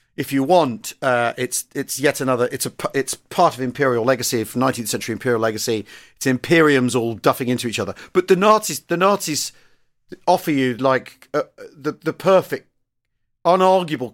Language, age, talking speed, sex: English, 40-59, 165 wpm, male